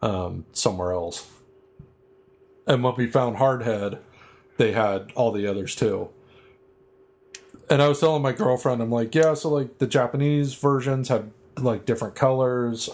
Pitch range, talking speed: 105-130 Hz, 150 wpm